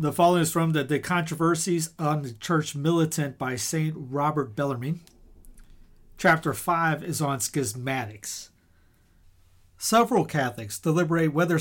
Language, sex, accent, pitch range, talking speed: English, male, American, 125-175 Hz, 125 wpm